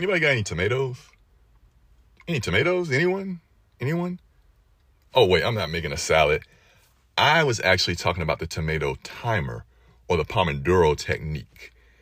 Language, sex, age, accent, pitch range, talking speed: English, male, 30-49, American, 80-115 Hz, 135 wpm